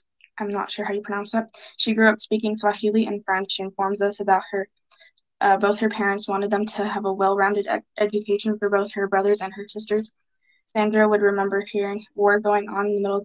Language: English